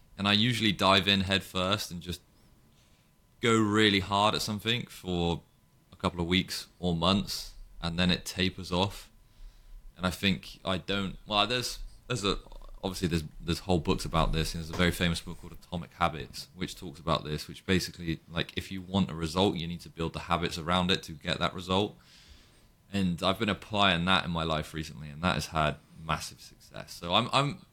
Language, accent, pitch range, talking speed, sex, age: English, British, 80-100 Hz, 200 wpm, male, 20-39